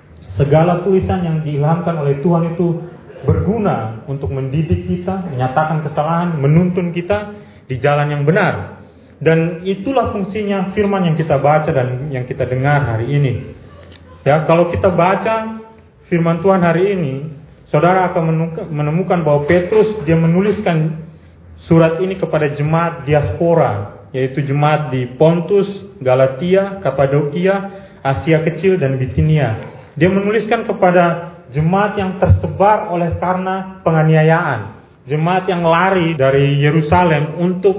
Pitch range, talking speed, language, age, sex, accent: 145-190 Hz, 120 wpm, Indonesian, 30-49, male, native